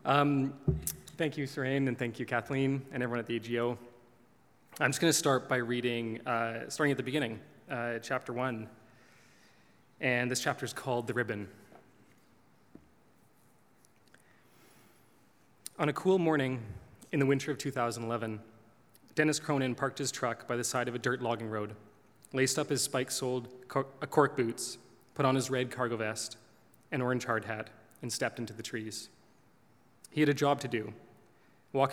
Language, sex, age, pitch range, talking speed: English, male, 20-39, 115-135 Hz, 165 wpm